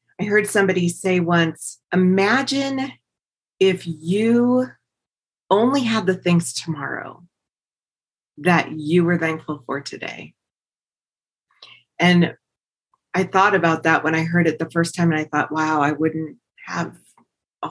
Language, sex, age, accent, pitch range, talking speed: English, female, 30-49, American, 160-190 Hz, 130 wpm